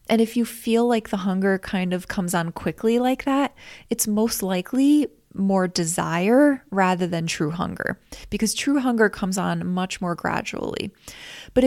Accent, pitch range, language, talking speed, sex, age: American, 185-245 Hz, English, 165 wpm, female, 20-39